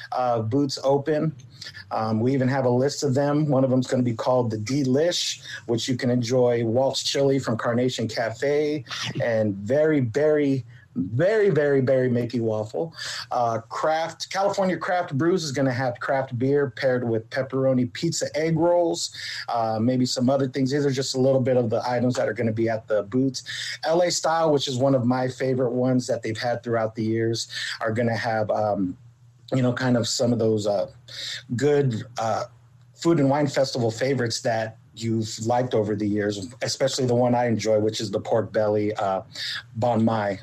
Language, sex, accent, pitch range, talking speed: English, male, American, 115-140 Hz, 195 wpm